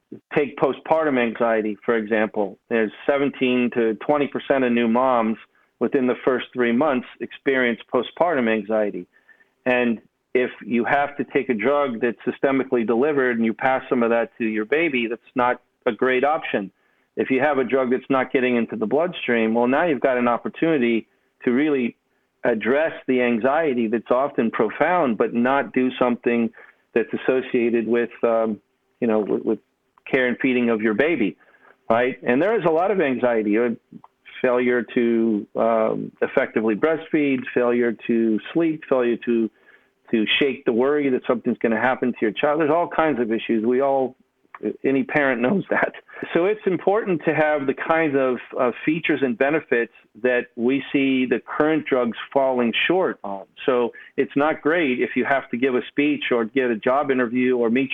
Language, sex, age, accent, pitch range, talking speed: English, male, 40-59, American, 115-135 Hz, 175 wpm